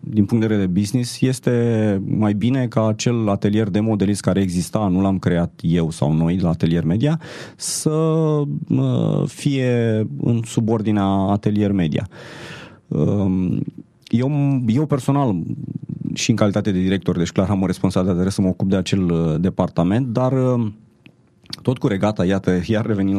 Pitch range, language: 95-130 Hz, Romanian